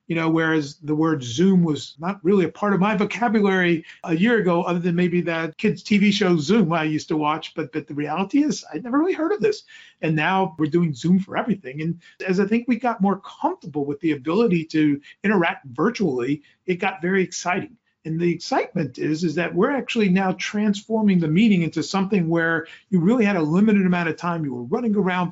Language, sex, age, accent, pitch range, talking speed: English, male, 40-59, American, 160-200 Hz, 220 wpm